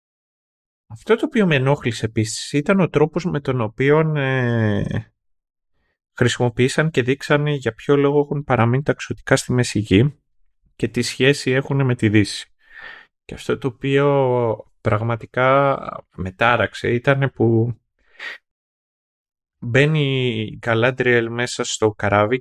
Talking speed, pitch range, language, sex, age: 120 wpm, 100-140 Hz, Greek, male, 30-49